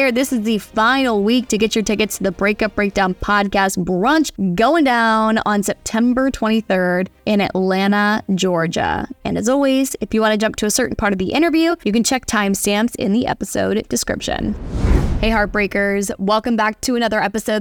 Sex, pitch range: female, 200-240 Hz